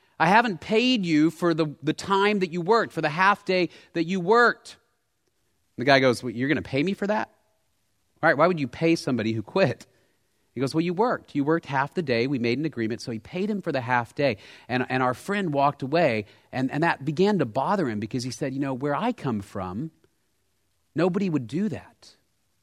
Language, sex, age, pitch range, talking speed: English, male, 40-59, 120-185 Hz, 230 wpm